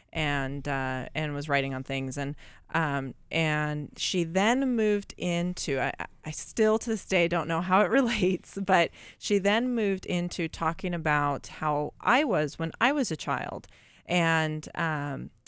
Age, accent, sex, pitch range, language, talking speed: 30-49, American, female, 150-190 Hz, English, 165 wpm